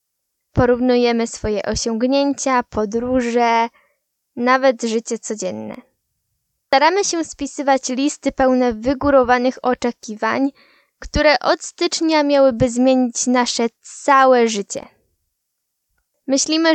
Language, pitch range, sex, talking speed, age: Polish, 230-280 Hz, female, 80 wpm, 10-29